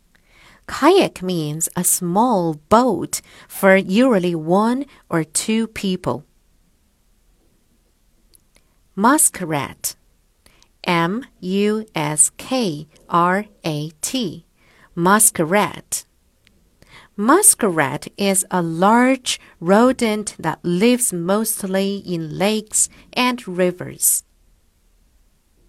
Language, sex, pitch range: Chinese, female, 165-215 Hz